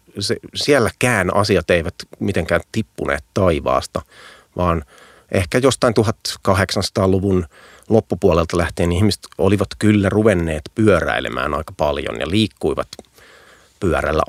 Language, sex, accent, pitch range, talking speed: Finnish, male, native, 90-105 Hz, 90 wpm